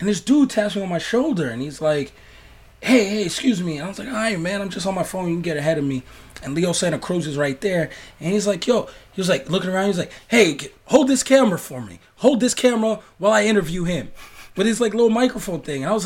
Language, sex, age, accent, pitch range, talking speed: English, male, 20-39, American, 170-255 Hz, 275 wpm